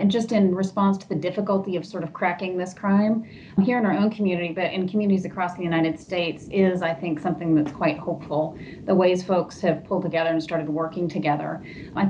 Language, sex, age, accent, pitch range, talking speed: English, female, 30-49, American, 165-200 Hz, 215 wpm